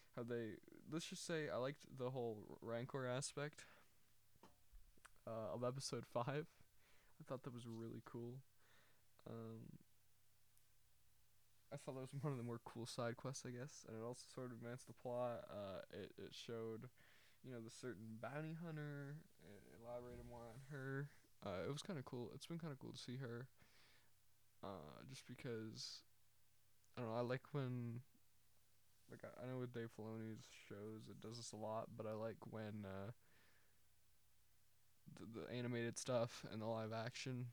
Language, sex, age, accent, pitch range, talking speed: English, male, 20-39, American, 110-125 Hz, 165 wpm